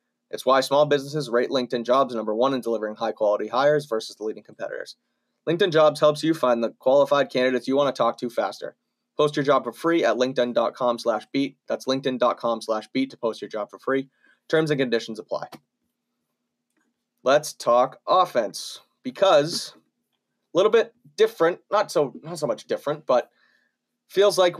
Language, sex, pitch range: English, male, 120-150 Hz